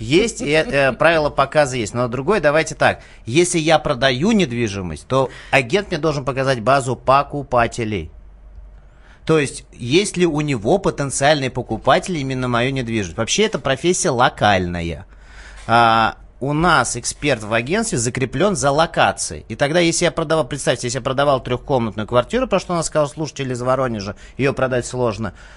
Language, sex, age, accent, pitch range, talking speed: Russian, male, 30-49, native, 125-185 Hz, 155 wpm